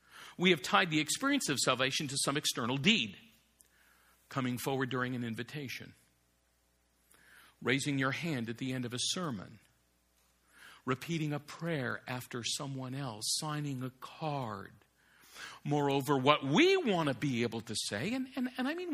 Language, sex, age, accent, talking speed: English, male, 50-69, American, 150 wpm